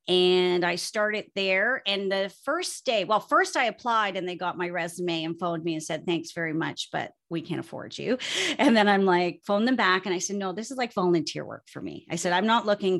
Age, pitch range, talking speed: 40-59, 170-205 Hz, 245 wpm